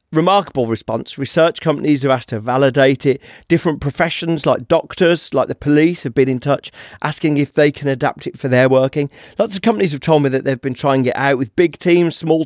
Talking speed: 215 wpm